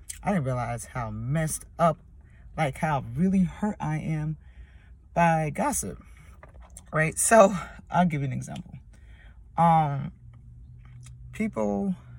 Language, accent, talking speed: English, American, 115 wpm